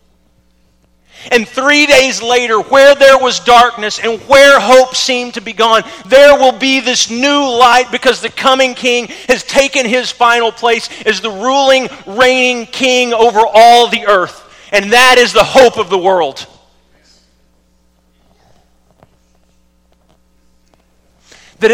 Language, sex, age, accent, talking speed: English, male, 40-59, American, 135 wpm